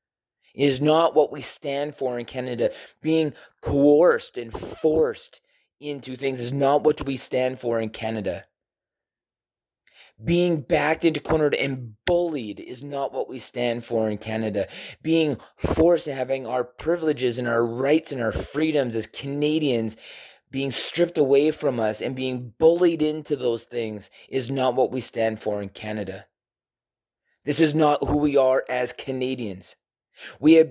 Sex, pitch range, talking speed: male, 120-150 Hz, 155 wpm